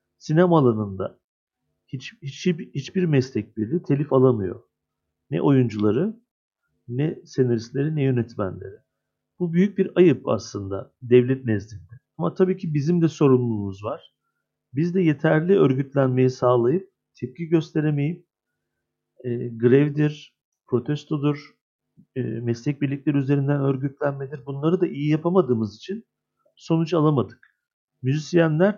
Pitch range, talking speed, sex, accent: 120-165 Hz, 110 wpm, male, native